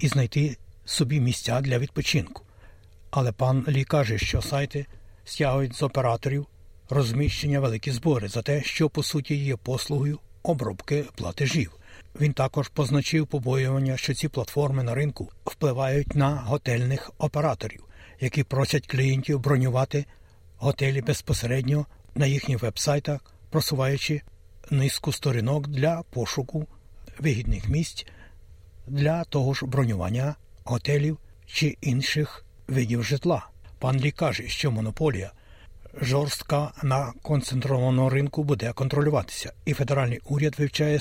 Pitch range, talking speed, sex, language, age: 115-145 Hz, 115 wpm, male, Ukrainian, 60-79